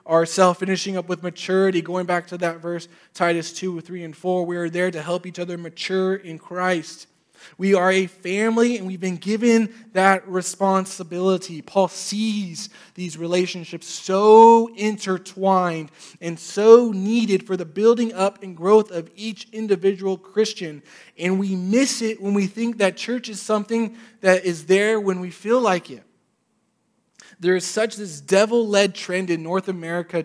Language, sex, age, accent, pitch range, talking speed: English, male, 20-39, American, 170-205 Hz, 165 wpm